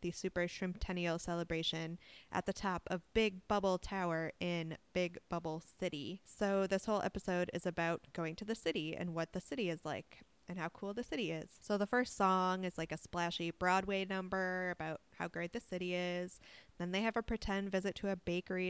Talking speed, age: 200 wpm, 20-39